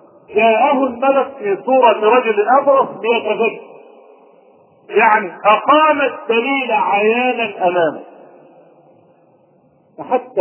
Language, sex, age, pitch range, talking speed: Arabic, male, 50-69, 225-310 Hz, 80 wpm